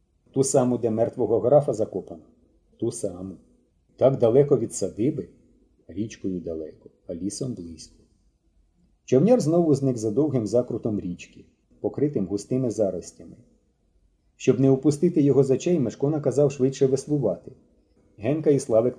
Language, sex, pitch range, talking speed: Ukrainian, male, 100-145 Hz, 125 wpm